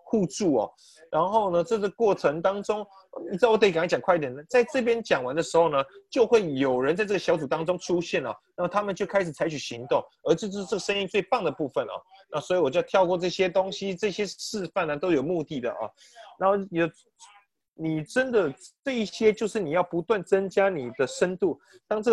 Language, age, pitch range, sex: Chinese, 30-49, 175-235 Hz, male